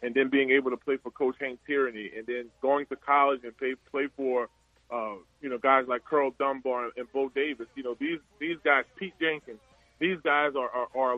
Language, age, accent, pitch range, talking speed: English, 20-39, American, 125-155 Hz, 220 wpm